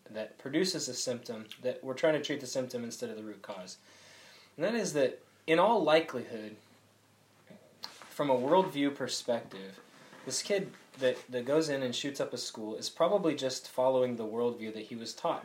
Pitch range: 125-160 Hz